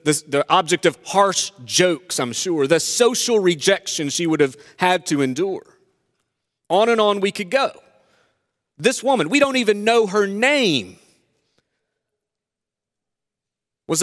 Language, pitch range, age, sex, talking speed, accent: English, 145-215 Hz, 40-59, male, 135 wpm, American